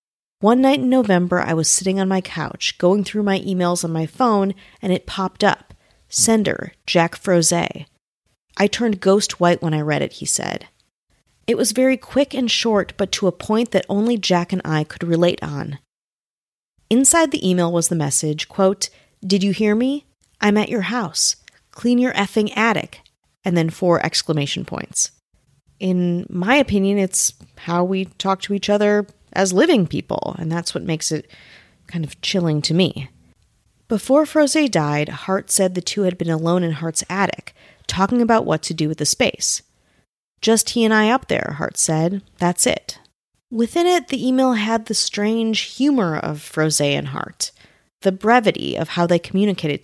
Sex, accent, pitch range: female, American, 170-220 Hz